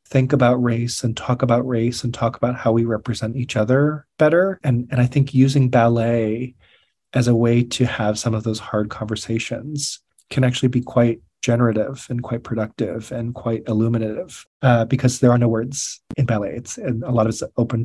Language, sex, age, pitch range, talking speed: English, male, 30-49, 110-125 Hz, 195 wpm